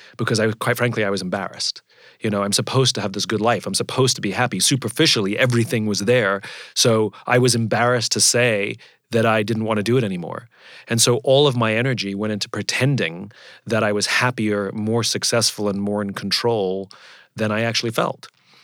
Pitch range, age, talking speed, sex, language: 100-120 Hz, 30-49, 205 wpm, male, English